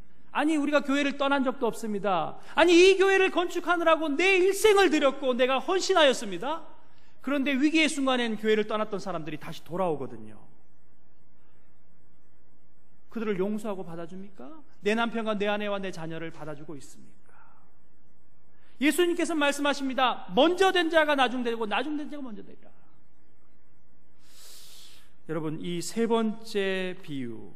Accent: native